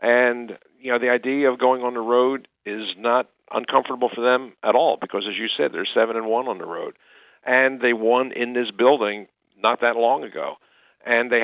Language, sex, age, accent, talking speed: English, male, 50-69, American, 210 wpm